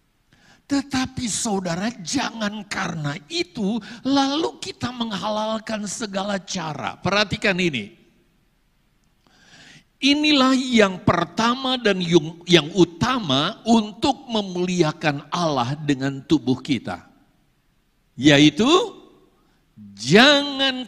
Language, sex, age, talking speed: Indonesian, male, 50-69, 75 wpm